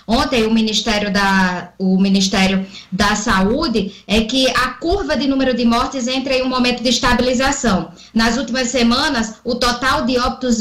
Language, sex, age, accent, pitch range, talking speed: Portuguese, female, 10-29, Brazilian, 220-270 Hz, 165 wpm